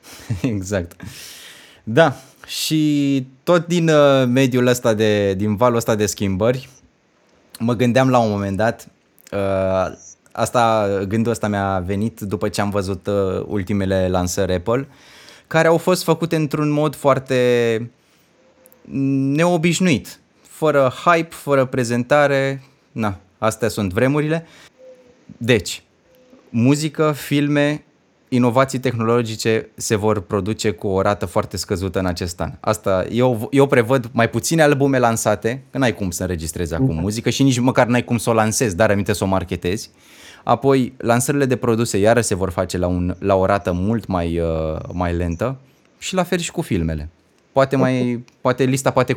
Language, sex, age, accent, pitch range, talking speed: Romanian, male, 20-39, native, 100-135 Hz, 145 wpm